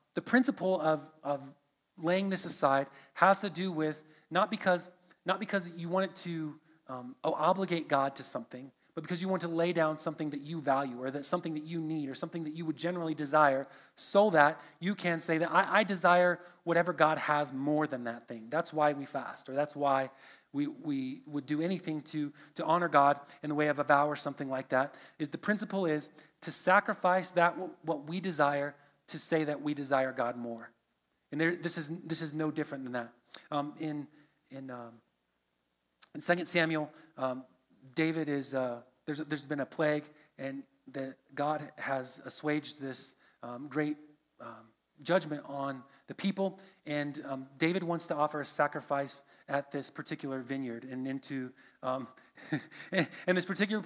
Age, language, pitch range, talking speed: 30-49, English, 140-170 Hz, 185 wpm